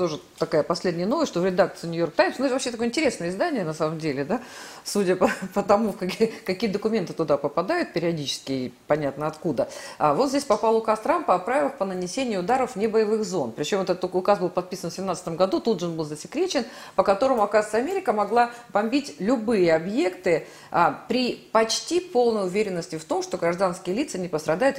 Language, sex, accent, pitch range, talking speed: Russian, female, native, 165-240 Hz, 190 wpm